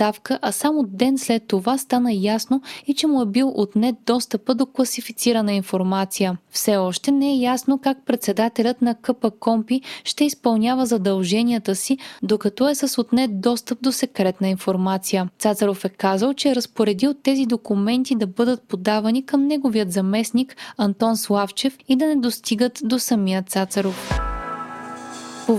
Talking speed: 150 wpm